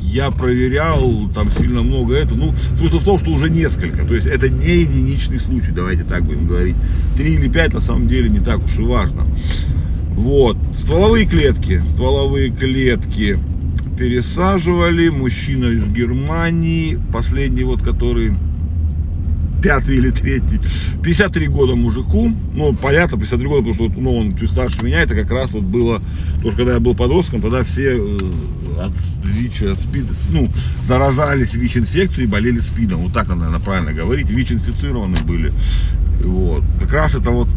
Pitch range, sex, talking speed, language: 75-95 Hz, male, 155 wpm, Russian